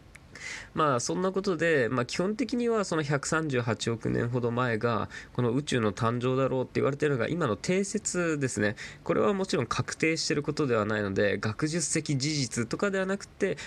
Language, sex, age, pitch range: Japanese, male, 20-39, 110-175 Hz